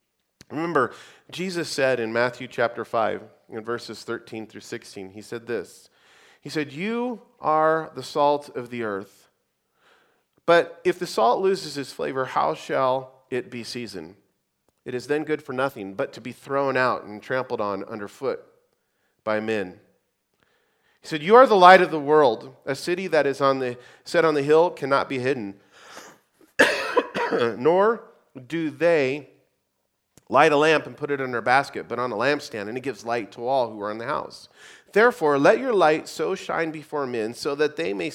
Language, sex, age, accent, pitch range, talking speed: English, male, 40-59, American, 125-170 Hz, 180 wpm